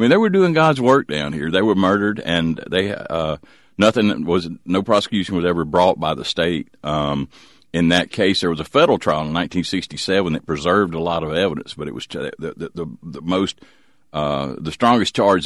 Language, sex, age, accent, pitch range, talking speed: English, male, 50-69, American, 75-90 Hz, 210 wpm